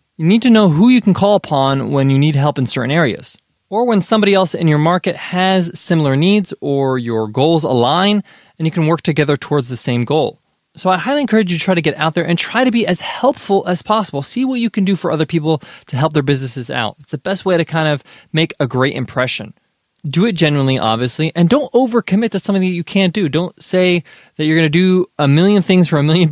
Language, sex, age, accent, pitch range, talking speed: English, male, 20-39, American, 140-190 Hz, 245 wpm